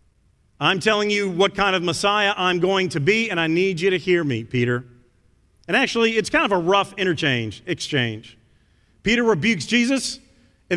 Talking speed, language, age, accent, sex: 180 wpm, English, 40-59, American, male